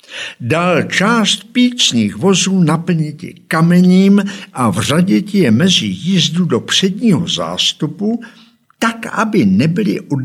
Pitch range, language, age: 125-190 Hz, Czech, 60-79